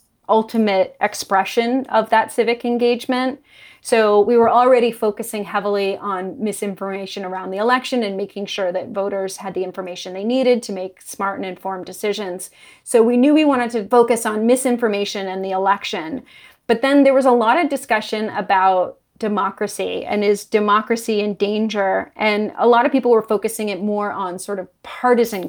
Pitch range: 195-235 Hz